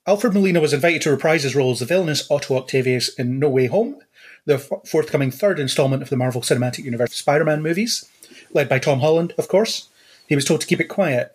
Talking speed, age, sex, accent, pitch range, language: 215 wpm, 30-49, male, British, 130-175 Hz, English